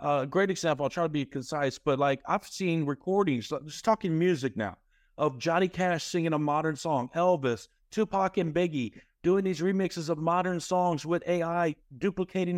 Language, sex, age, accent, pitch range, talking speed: English, male, 50-69, American, 140-185 Hz, 185 wpm